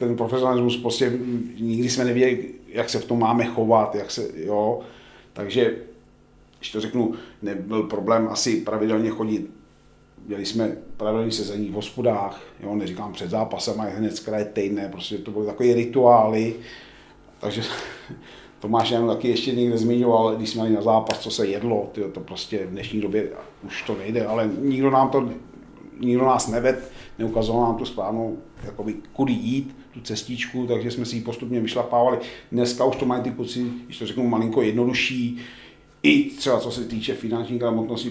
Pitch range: 105-120 Hz